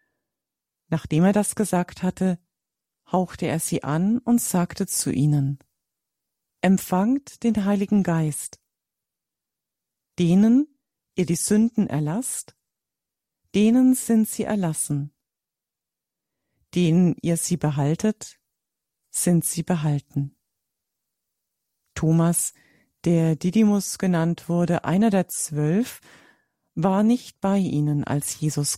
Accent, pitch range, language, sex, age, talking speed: German, 160-210 Hz, German, female, 40-59, 100 wpm